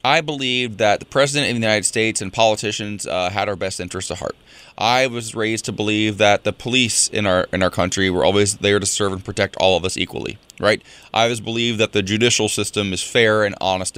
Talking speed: 230 wpm